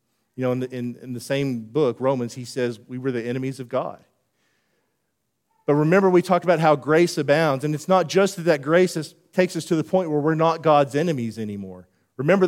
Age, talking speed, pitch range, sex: 40-59, 205 wpm, 125-185 Hz, male